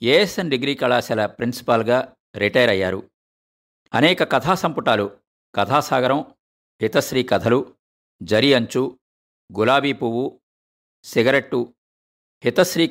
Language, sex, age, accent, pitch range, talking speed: Telugu, male, 50-69, native, 100-135 Hz, 85 wpm